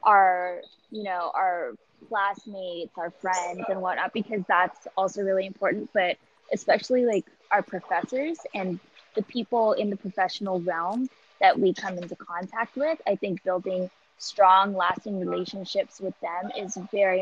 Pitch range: 185-225 Hz